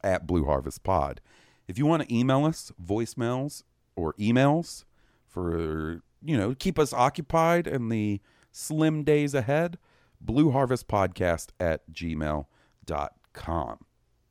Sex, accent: male, American